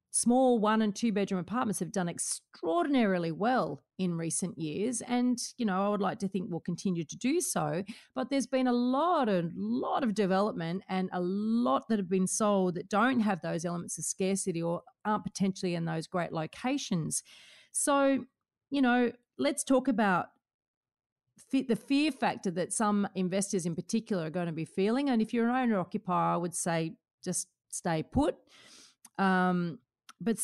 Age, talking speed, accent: 40-59, 175 wpm, Australian